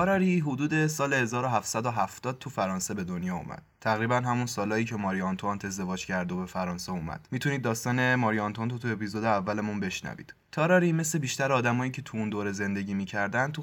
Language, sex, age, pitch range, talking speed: Persian, male, 20-39, 105-130 Hz, 165 wpm